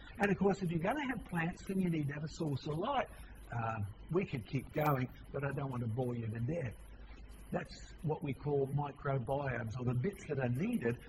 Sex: male